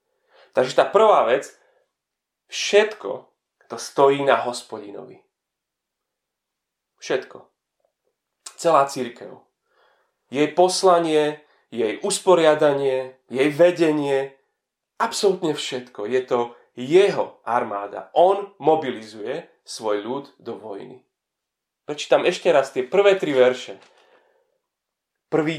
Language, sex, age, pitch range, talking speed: Slovak, male, 30-49, 130-190 Hz, 90 wpm